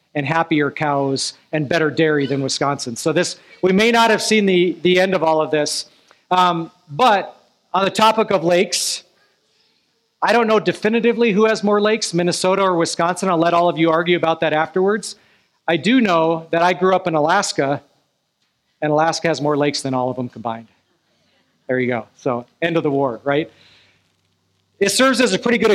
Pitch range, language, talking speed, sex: 155-205 Hz, English, 195 wpm, male